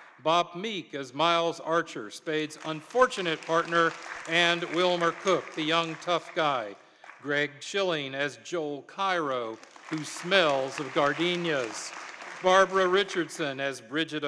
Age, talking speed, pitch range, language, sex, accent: 50-69, 120 wpm, 145-175 Hz, English, male, American